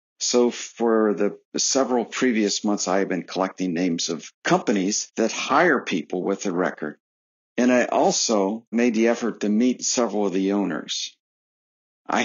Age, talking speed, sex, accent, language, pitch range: 50-69, 150 wpm, male, American, English, 95-120 Hz